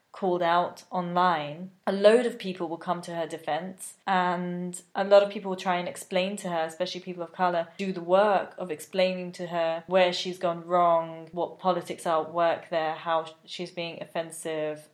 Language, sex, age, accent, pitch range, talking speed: English, female, 20-39, British, 160-185 Hz, 195 wpm